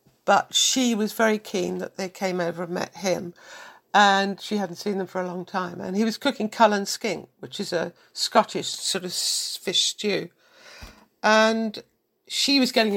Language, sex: English, female